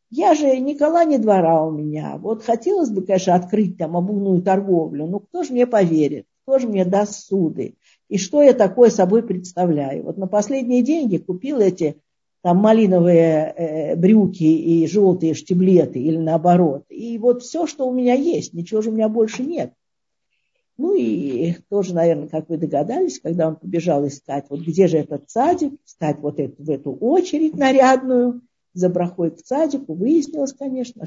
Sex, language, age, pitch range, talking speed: female, Russian, 50-69, 165-235 Hz, 165 wpm